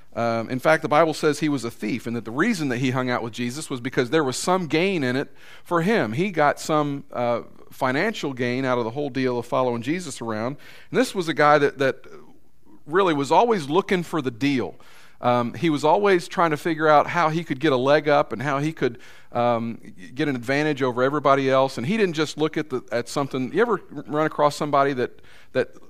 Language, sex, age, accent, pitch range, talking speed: English, male, 40-59, American, 120-155 Hz, 235 wpm